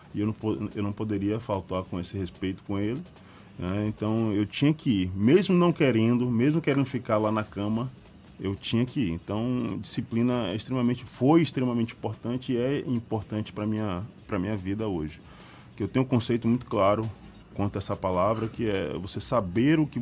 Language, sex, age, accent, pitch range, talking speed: Portuguese, male, 20-39, Brazilian, 100-120 Hz, 190 wpm